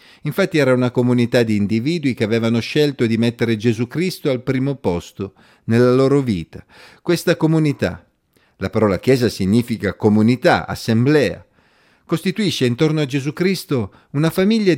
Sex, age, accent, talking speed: male, 40-59, native, 140 wpm